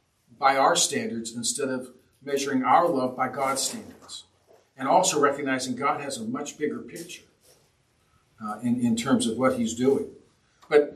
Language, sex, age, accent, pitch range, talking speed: English, male, 50-69, American, 120-170 Hz, 160 wpm